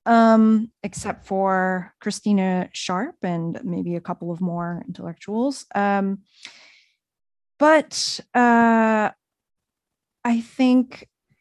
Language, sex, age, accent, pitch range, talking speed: English, female, 20-39, American, 175-220 Hz, 90 wpm